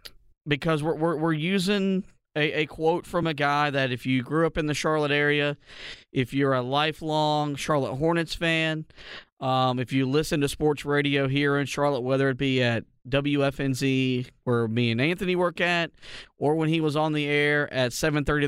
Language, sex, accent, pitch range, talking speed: English, male, American, 130-155 Hz, 185 wpm